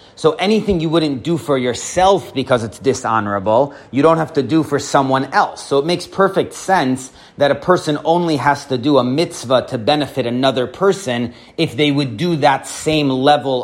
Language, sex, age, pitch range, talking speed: English, male, 30-49, 125-160 Hz, 190 wpm